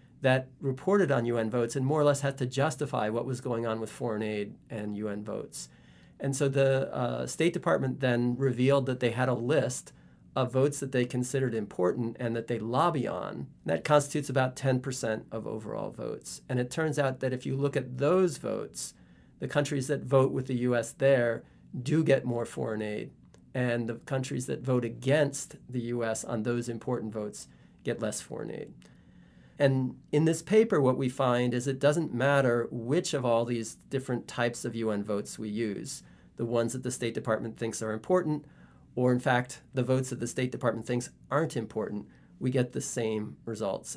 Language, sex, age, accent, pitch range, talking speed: English, male, 40-59, American, 115-135 Hz, 190 wpm